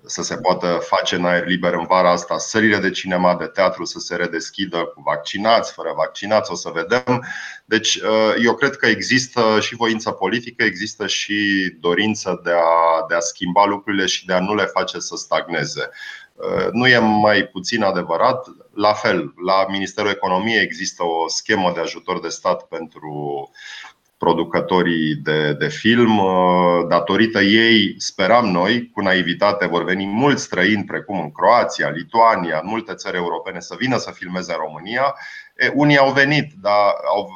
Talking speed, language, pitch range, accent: 160 wpm, Romanian, 90-115 Hz, native